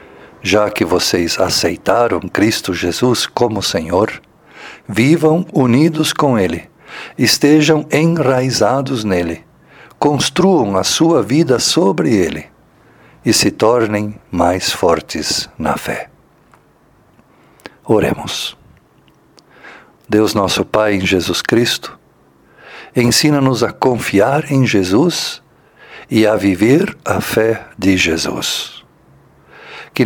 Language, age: Portuguese, 50-69